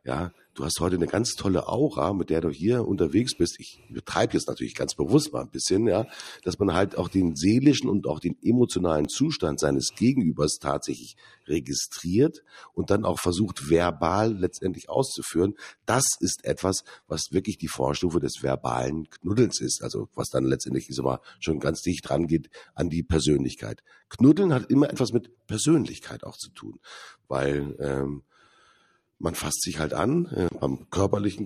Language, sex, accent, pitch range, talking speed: German, male, German, 75-100 Hz, 165 wpm